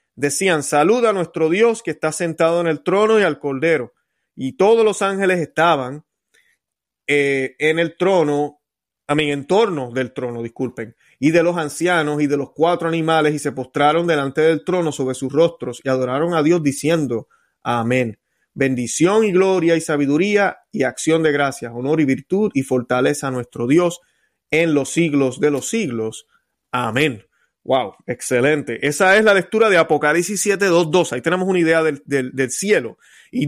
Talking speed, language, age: 175 wpm, Spanish, 30-49